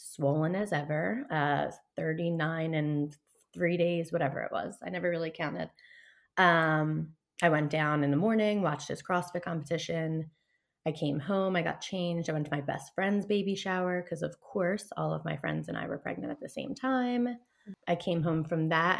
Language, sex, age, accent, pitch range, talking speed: English, female, 20-39, American, 155-195 Hz, 190 wpm